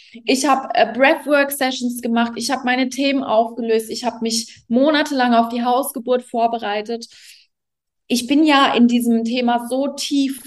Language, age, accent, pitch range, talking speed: English, 20-39, German, 225-275 Hz, 150 wpm